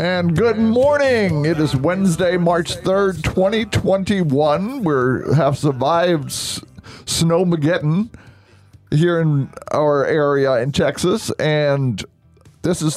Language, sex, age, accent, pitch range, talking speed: English, male, 50-69, American, 135-180 Hz, 100 wpm